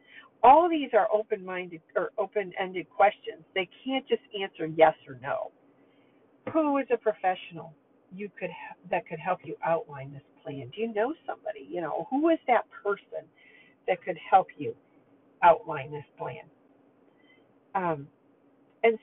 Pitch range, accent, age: 165-230 Hz, American, 50-69